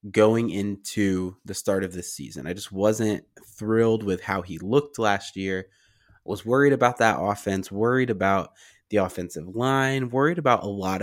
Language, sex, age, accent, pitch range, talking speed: English, male, 20-39, American, 95-115 Hz, 170 wpm